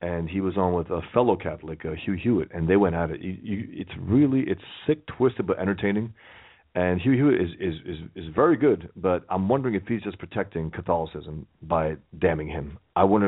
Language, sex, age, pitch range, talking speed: English, male, 40-59, 90-115 Hz, 210 wpm